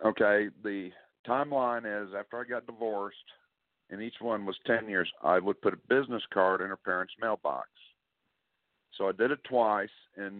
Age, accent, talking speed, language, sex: 50-69, American, 175 wpm, English, male